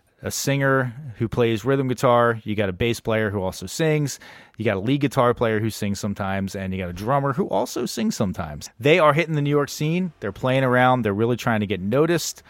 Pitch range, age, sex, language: 105-135 Hz, 30-49, male, English